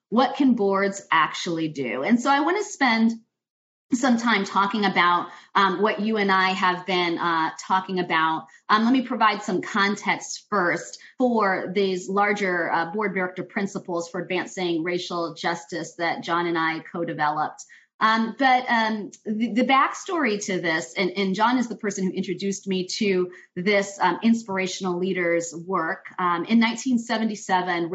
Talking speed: 155 wpm